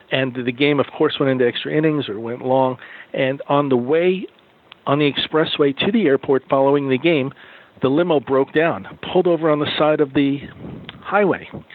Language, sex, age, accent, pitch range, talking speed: English, male, 50-69, American, 135-160 Hz, 190 wpm